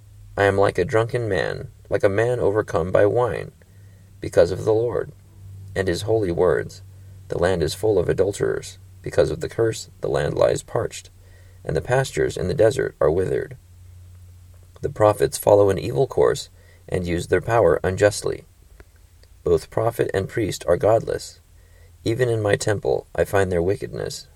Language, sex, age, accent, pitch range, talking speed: English, male, 30-49, American, 85-110 Hz, 165 wpm